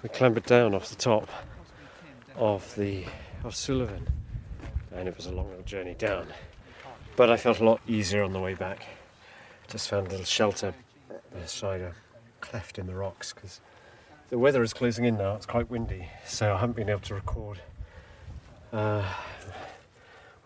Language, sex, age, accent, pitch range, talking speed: English, male, 40-59, British, 95-110 Hz, 165 wpm